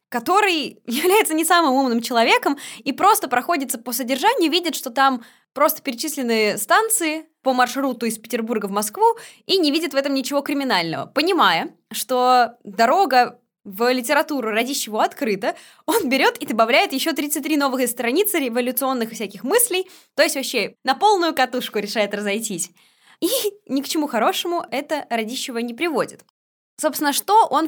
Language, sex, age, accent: Russian, female, 20-39, native